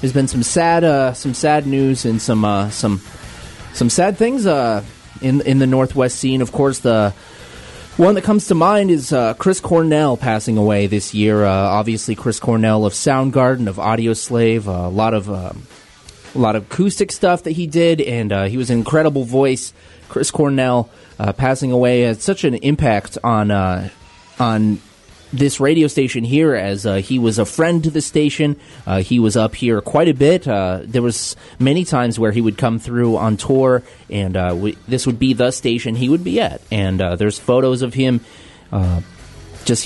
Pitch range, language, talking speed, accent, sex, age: 105-135 Hz, English, 195 wpm, American, male, 30-49